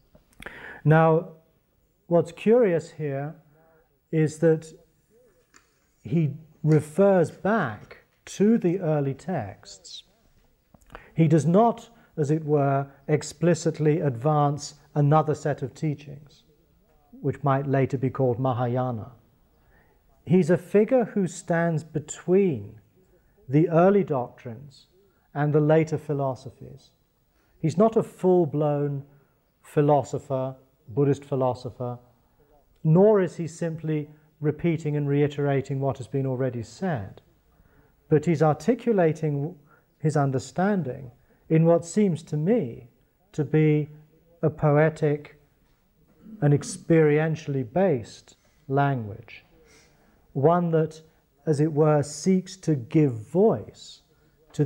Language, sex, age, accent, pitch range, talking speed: English, male, 40-59, British, 135-165 Hz, 100 wpm